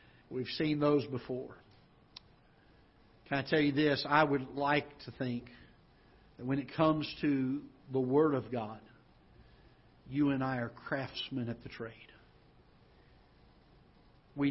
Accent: American